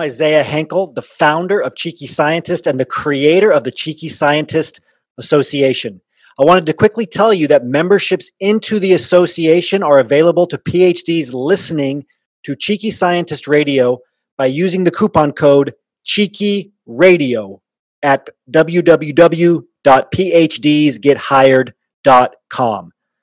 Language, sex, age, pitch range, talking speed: English, male, 30-49, 145-180 Hz, 115 wpm